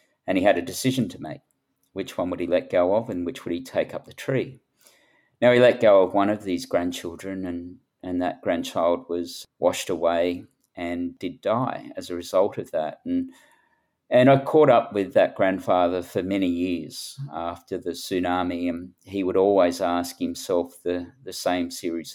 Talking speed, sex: 190 wpm, male